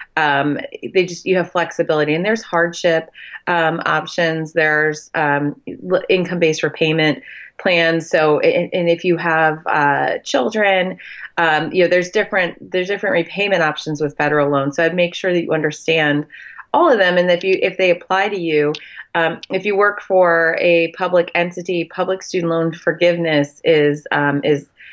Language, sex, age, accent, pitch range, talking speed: English, female, 30-49, American, 155-180 Hz, 170 wpm